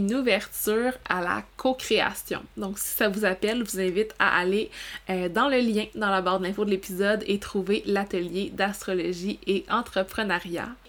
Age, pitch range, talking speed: 20-39, 190-220 Hz, 170 wpm